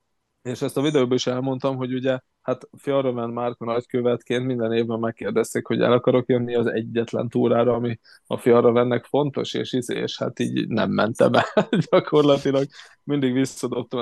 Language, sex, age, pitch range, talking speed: Hungarian, male, 20-39, 115-130 Hz, 155 wpm